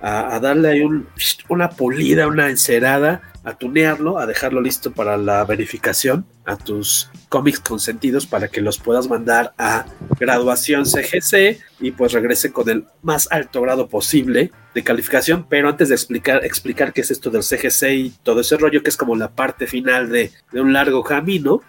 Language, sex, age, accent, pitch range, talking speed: Spanish, male, 40-59, Mexican, 125-170 Hz, 175 wpm